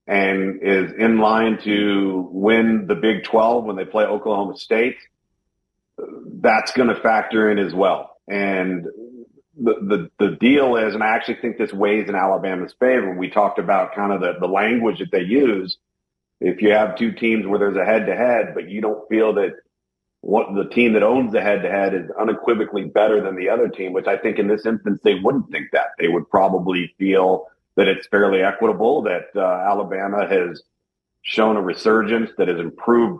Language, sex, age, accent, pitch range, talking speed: English, male, 40-59, American, 95-115 Hz, 185 wpm